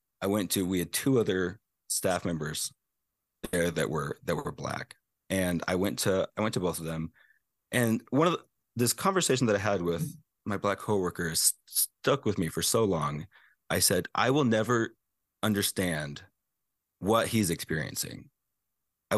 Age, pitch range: 30-49, 85-125 Hz